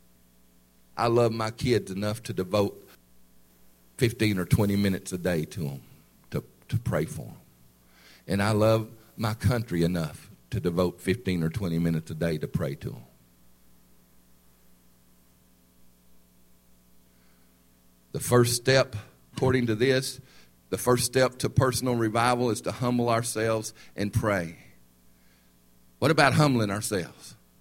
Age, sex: 50-69, male